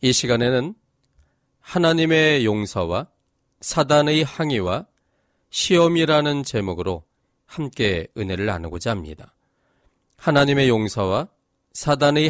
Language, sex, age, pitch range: Korean, male, 40-59, 105-145 Hz